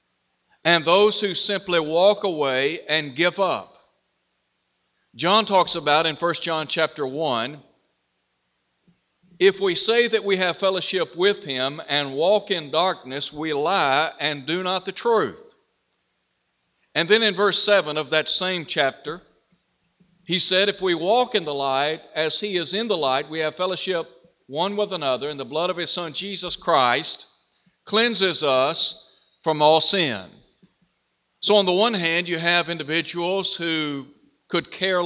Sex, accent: male, American